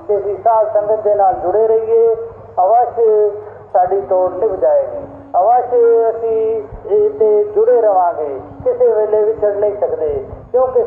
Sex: male